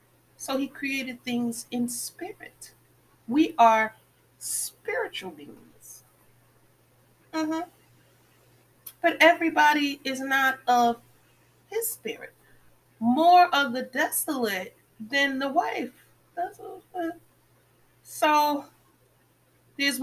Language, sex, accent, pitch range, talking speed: English, female, American, 245-355 Hz, 85 wpm